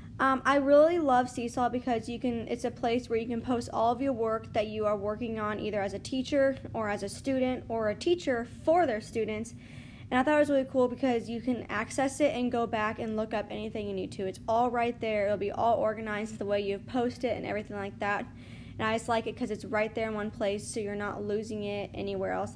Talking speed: 255 wpm